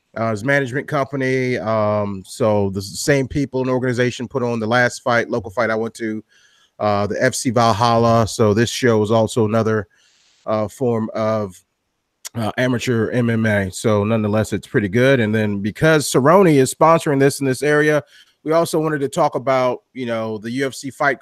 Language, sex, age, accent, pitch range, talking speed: English, male, 30-49, American, 110-140 Hz, 180 wpm